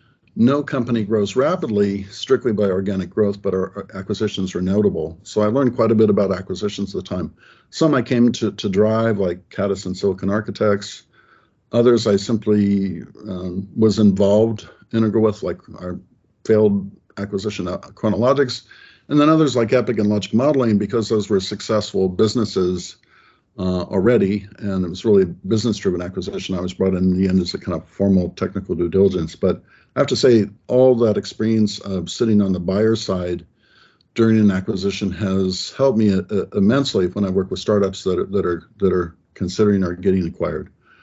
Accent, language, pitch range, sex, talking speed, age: American, English, 95-115 Hz, male, 180 wpm, 50-69